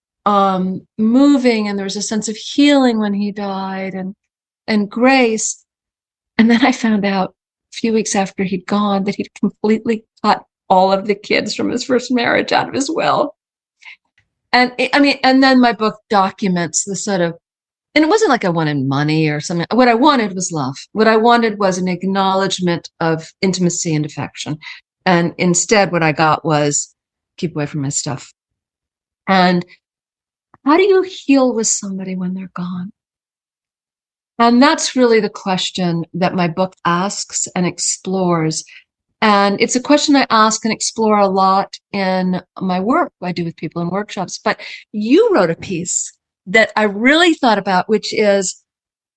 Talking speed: 170 wpm